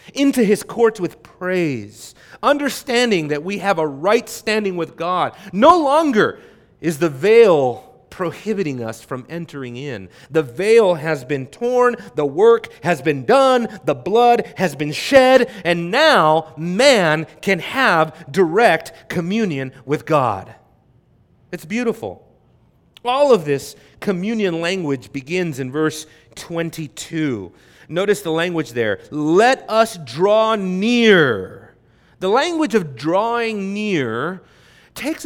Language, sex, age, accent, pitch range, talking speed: English, male, 40-59, American, 155-220 Hz, 125 wpm